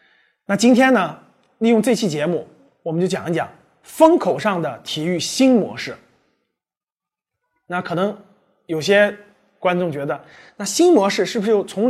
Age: 20-39